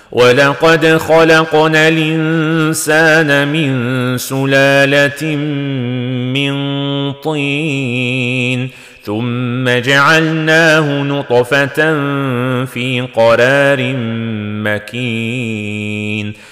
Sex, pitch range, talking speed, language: male, 125-155 Hz, 45 wpm, Arabic